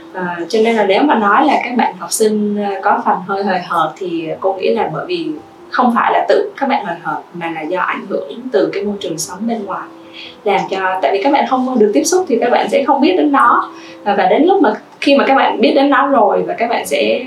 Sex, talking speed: female, 270 wpm